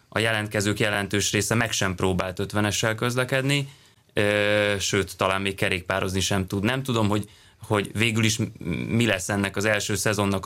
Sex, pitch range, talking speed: male, 100-115 Hz, 155 wpm